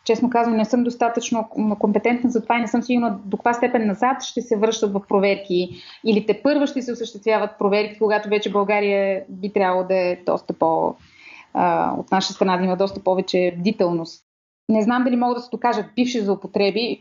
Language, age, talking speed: Bulgarian, 20-39, 185 wpm